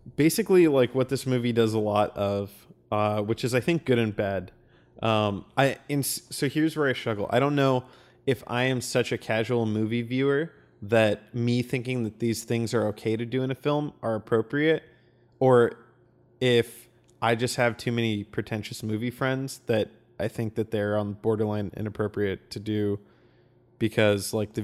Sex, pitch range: male, 110-130 Hz